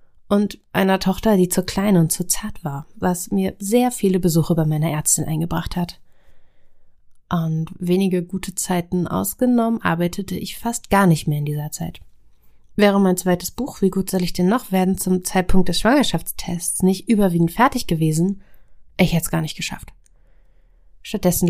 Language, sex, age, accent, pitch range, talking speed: German, female, 30-49, German, 165-200 Hz, 165 wpm